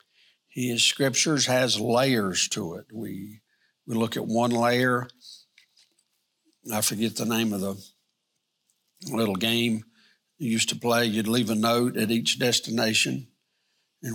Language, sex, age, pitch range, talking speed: English, male, 60-79, 110-135 Hz, 135 wpm